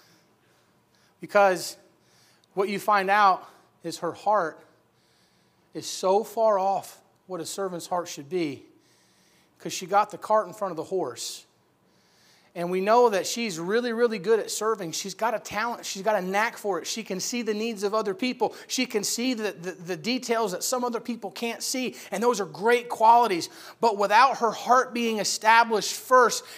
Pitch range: 185-255 Hz